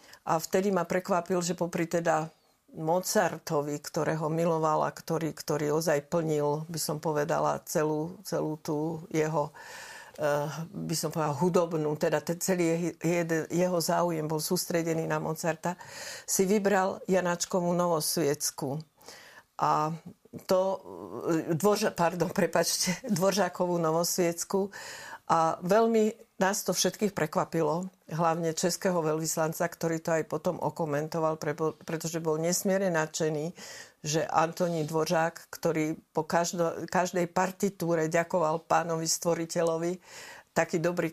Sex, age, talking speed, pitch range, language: female, 50-69, 110 wpm, 155-175 Hz, Slovak